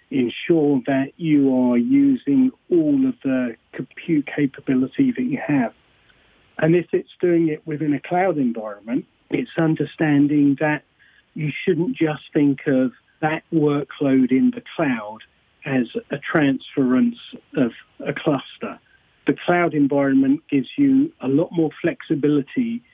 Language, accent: English, British